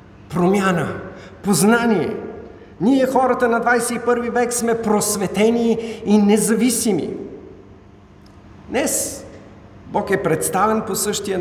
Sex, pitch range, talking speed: male, 140-230 Hz, 90 wpm